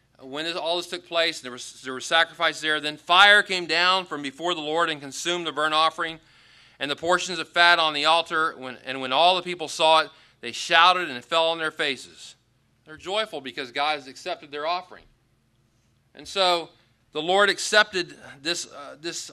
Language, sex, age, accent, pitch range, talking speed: English, male, 40-59, American, 140-180 Hz, 200 wpm